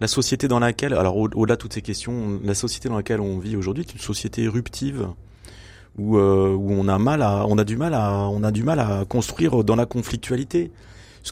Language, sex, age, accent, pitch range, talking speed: French, male, 30-49, French, 100-120 Hz, 230 wpm